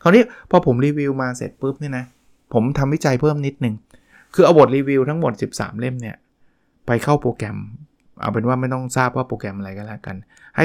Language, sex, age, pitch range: Thai, male, 20-39, 115-140 Hz